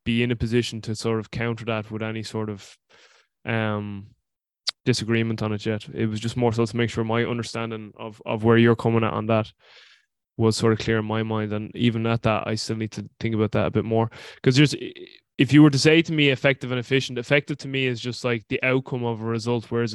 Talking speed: 245 wpm